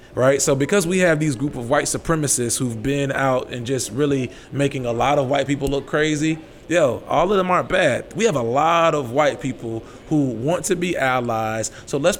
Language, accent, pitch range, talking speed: English, American, 125-150 Hz, 215 wpm